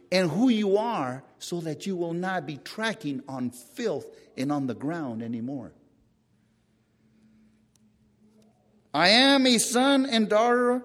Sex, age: male, 50-69